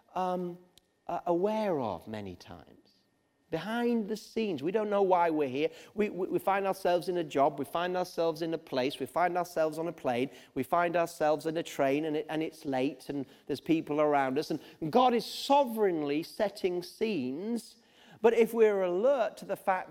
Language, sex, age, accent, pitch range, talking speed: English, male, 40-59, British, 140-195 Hz, 195 wpm